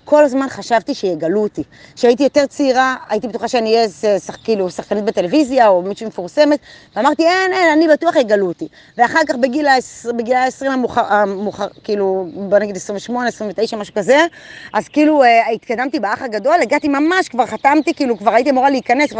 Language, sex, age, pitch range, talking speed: Hebrew, female, 20-39, 215-295 Hz, 165 wpm